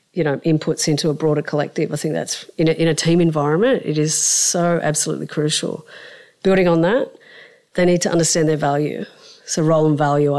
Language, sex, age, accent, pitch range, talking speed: English, female, 40-59, Australian, 150-175 Hz, 195 wpm